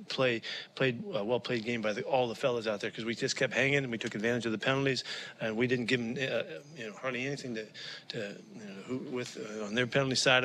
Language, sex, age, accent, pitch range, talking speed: English, male, 40-59, American, 110-130 Hz, 260 wpm